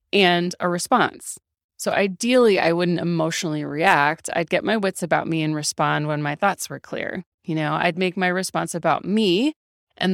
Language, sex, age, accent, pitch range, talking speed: English, female, 30-49, American, 155-185 Hz, 185 wpm